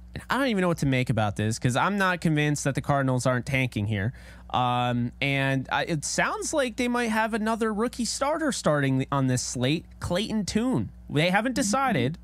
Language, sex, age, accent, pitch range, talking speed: English, male, 20-39, American, 115-155 Hz, 190 wpm